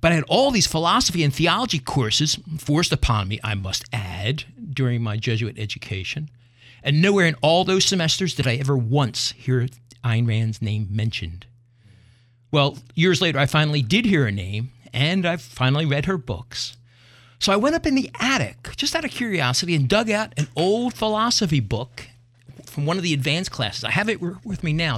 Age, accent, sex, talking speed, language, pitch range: 50-69, American, male, 190 wpm, English, 120-170 Hz